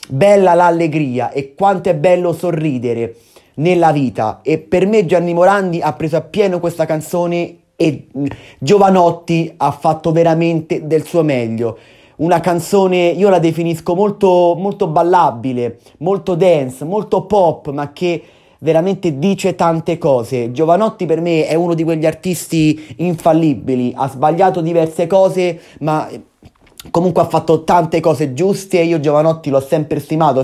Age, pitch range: 30-49, 145-175 Hz